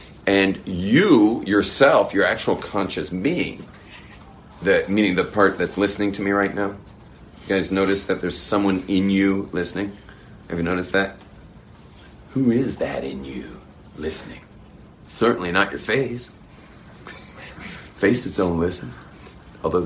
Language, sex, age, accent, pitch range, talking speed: English, male, 40-59, American, 90-120 Hz, 135 wpm